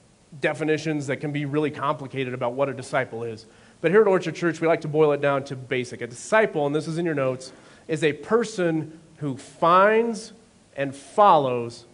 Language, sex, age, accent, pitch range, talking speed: English, male, 40-59, American, 135-175 Hz, 195 wpm